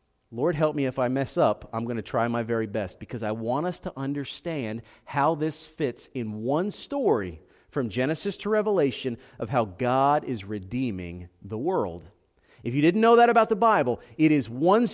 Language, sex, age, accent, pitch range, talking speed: English, male, 40-59, American, 125-195 Hz, 195 wpm